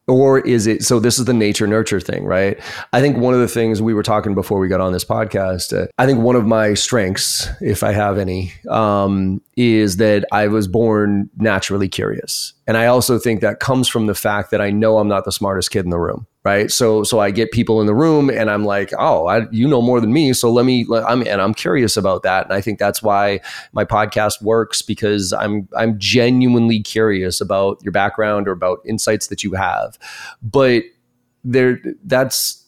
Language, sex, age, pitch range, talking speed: English, male, 30-49, 100-120 Hz, 215 wpm